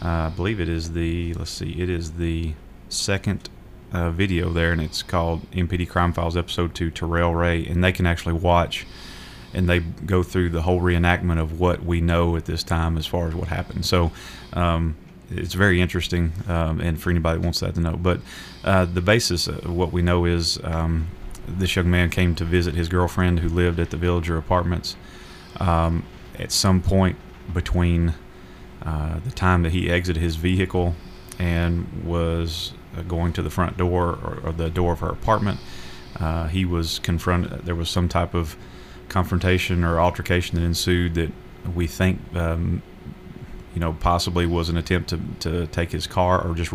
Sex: male